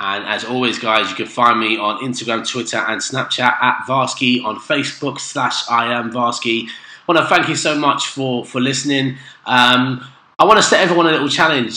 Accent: British